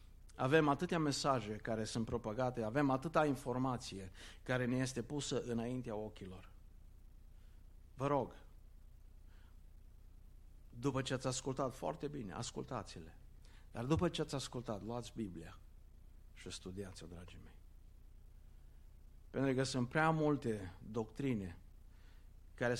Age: 50-69